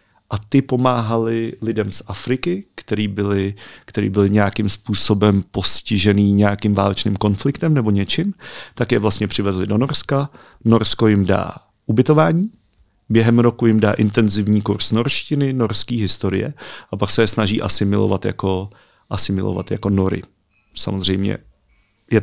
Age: 40-59